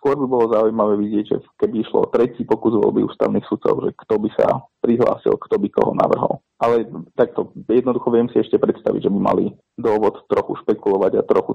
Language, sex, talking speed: Slovak, male, 190 wpm